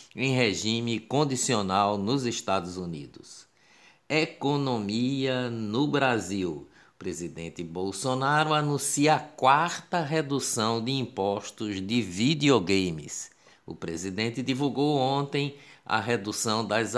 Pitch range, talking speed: 105-135 Hz, 95 wpm